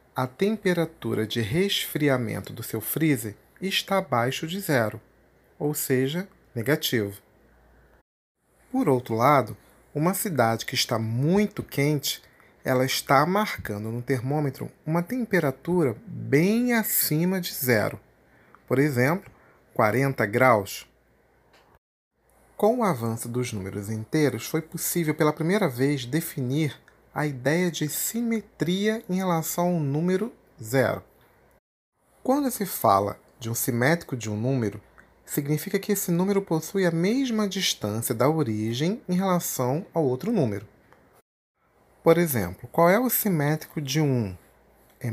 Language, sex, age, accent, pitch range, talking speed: Portuguese, male, 40-59, Brazilian, 120-180 Hz, 125 wpm